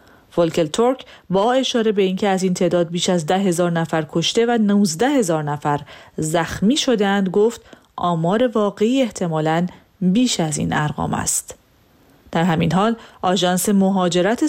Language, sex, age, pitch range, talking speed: Persian, female, 30-49, 170-220 Hz, 145 wpm